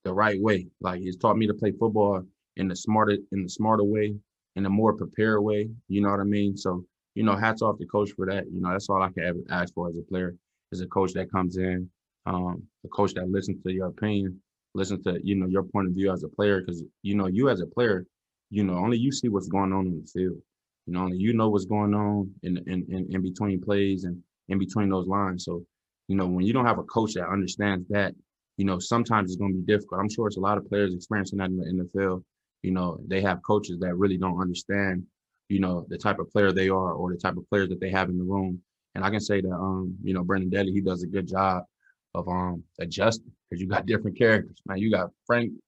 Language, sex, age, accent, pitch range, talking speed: English, male, 20-39, American, 95-110 Hz, 255 wpm